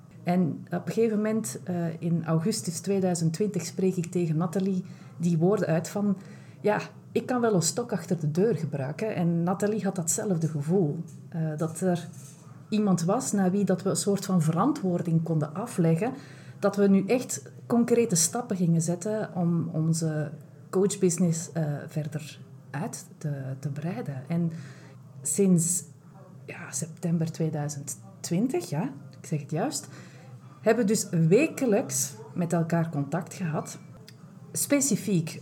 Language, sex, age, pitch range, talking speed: Dutch, female, 30-49, 160-195 Hz, 130 wpm